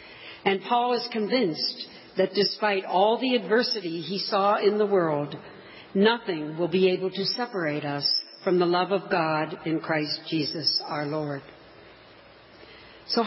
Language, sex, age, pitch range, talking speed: English, female, 60-79, 170-220 Hz, 145 wpm